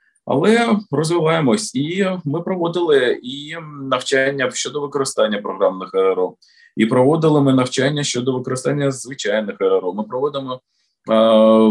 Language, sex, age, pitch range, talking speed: Ukrainian, male, 20-39, 105-145 Hz, 115 wpm